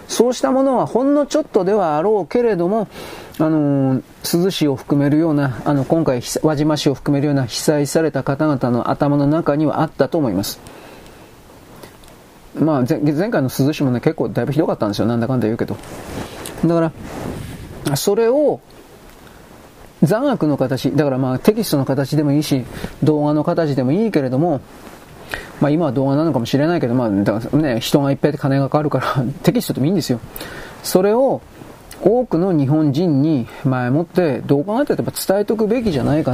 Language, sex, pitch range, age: Japanese, male, 140-175 Hz, 40-59